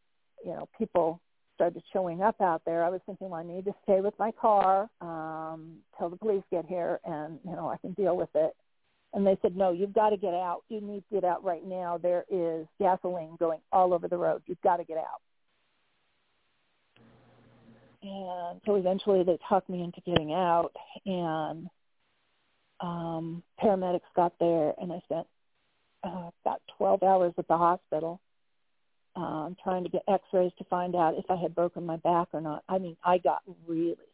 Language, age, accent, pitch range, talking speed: English, 50-69, American, 165-195 Hz, 190 wpm